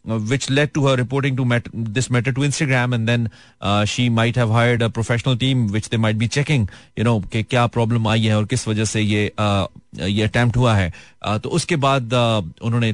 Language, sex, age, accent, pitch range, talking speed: Hindi, male, 30-49, native, 110-140 Hz, 225 wpm